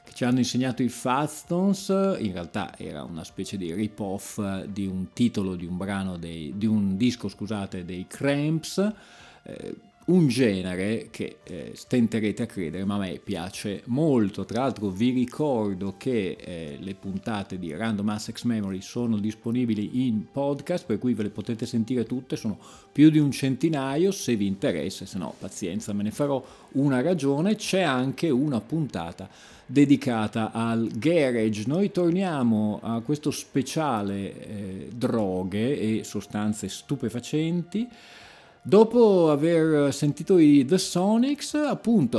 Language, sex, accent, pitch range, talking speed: Italian, male, native, 105-145 Hz, 145 wpm